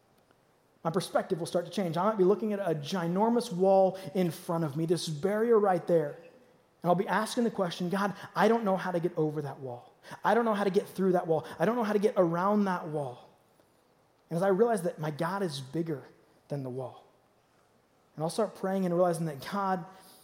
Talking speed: 225 wpm